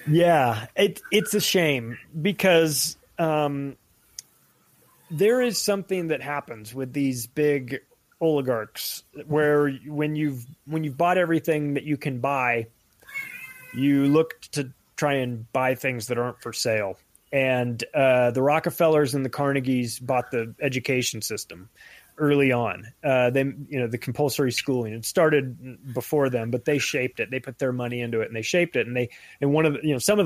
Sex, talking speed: male, 170 wpm